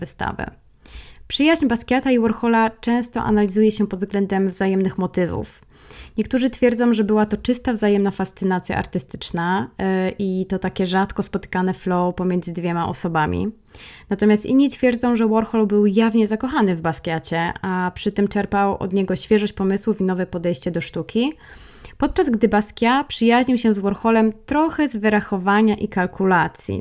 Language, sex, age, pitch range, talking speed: Polish, female, 20-39, 185-215 Hz, 145 wpm